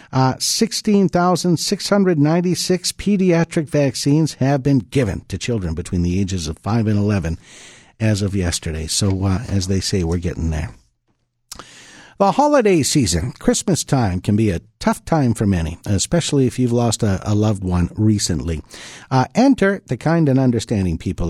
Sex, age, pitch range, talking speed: male, 50-69, 105-155 Hz, 155 wpm